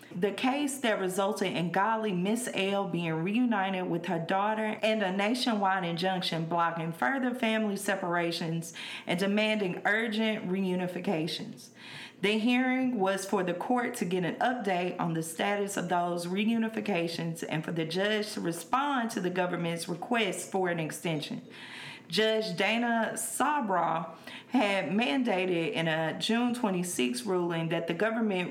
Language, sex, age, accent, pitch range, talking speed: English, female, 40-59, American, 175-220 Hz, 140 wpm